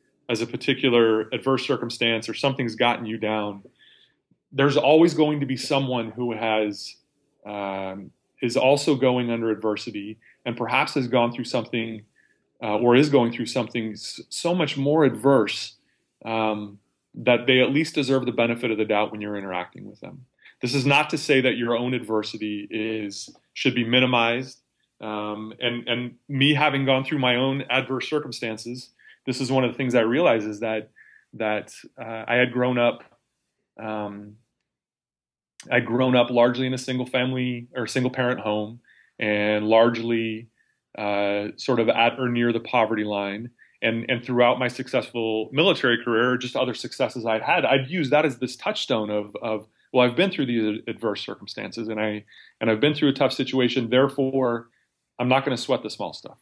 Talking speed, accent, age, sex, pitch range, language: 175 wpm, American, 30-49, male, 110-130 Hz, English